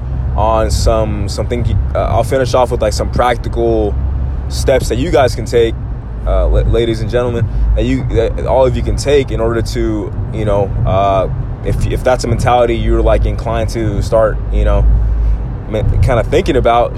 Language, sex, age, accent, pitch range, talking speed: English, male, 20-39, American, 105-120 Hz, 180 wpm